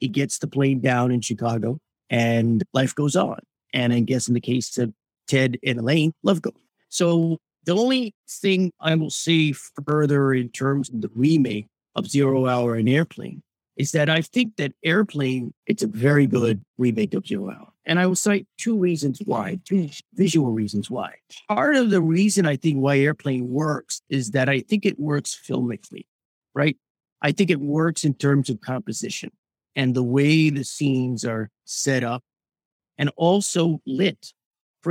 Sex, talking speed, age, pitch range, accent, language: male, 175 wpm, 50-69, 130-170 Hz, American, English